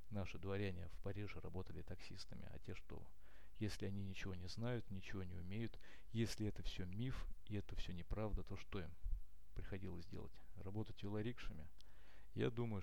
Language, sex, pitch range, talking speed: Russian, male, 95-105 Hz, 160 wpm